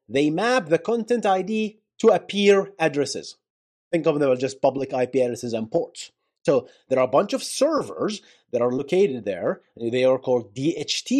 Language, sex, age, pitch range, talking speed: English, male, 30-49, 130-200 Hz, 180 wpm